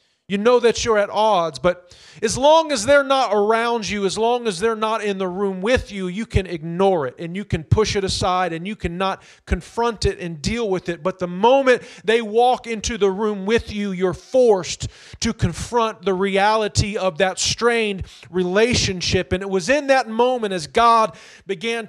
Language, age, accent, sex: English, 40-59, American, male